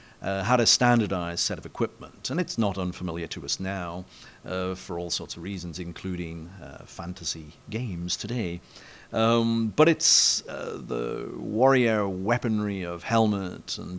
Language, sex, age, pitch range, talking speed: English, male, 50-69, 90-120 Hz, 150 wpm